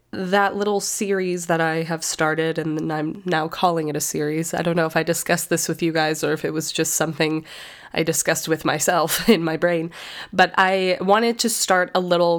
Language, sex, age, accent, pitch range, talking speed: English, female, 20-39, American, 165-220 Hz, 215 wpm